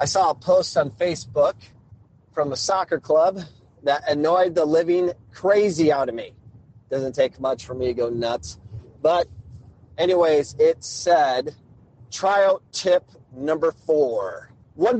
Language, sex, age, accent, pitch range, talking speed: English, male, 40-59, American, 120-185 Hz, 140 wpm